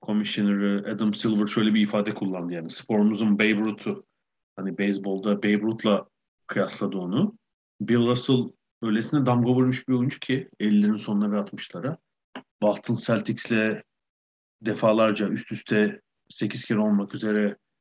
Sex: male